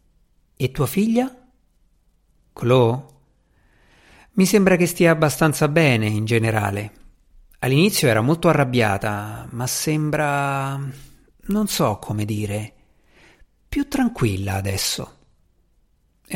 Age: 50-69